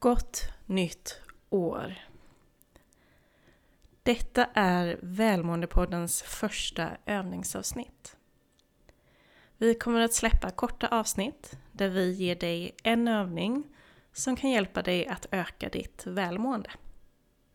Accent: native